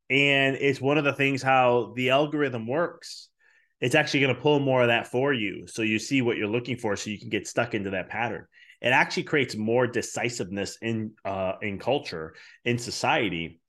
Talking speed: 200 wpm